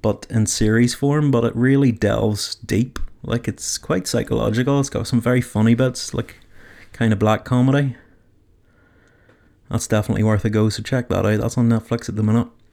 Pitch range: 105-125 Hz